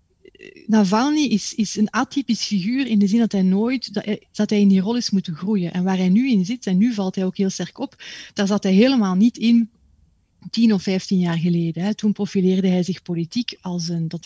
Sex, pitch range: female, 175-215 Hz